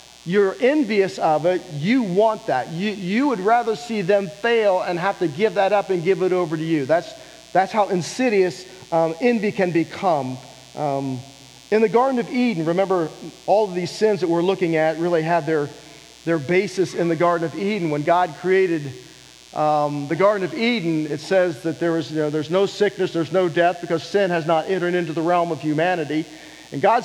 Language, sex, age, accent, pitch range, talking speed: English, male, 40-59, American, 175-230 Hz, 205 wpm